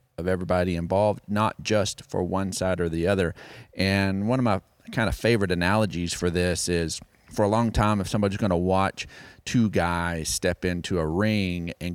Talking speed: 190 wpm